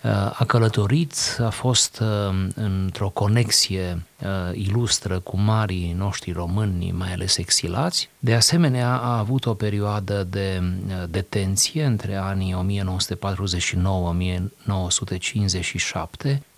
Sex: male